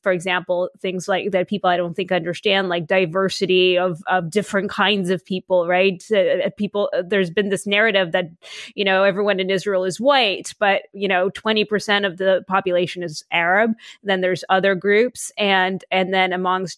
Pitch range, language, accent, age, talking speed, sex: 185-220 Hz, English, American, 20-39, 175 wpm, female